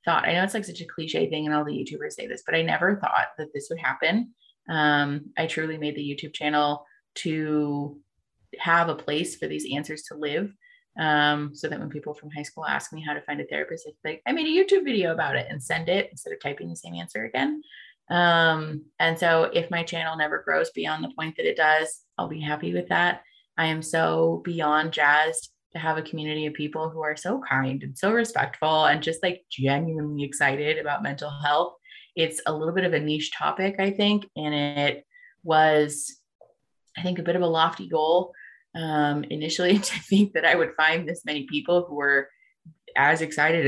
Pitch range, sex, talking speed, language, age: 150-170 Hz, female, 210 wpm, English, 20-39